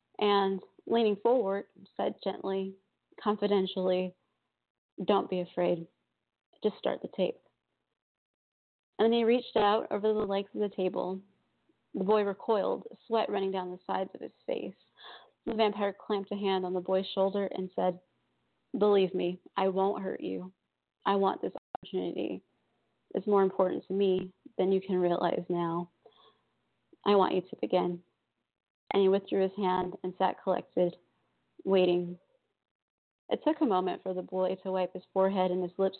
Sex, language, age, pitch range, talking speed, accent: female, English, 30-49, 185-205 Hz, 155 wpm, American